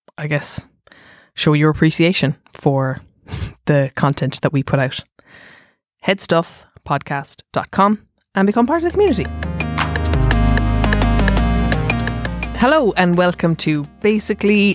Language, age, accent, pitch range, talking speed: English, 20-39, Irish, 140-165 Hz, 100 wpm